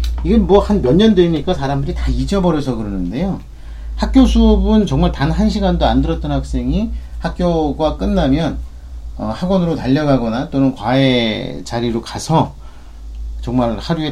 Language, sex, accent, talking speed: English, male, Korean, 105 wpm